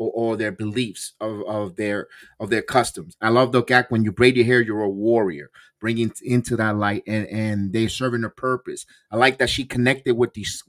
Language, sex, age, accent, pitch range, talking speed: English, male, 30-49, American, 110-130 Hz, 220 wpm